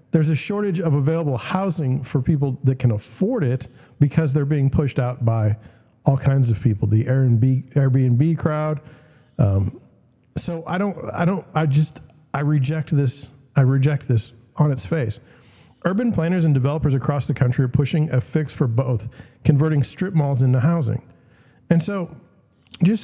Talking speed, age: 165 wpm, 50-69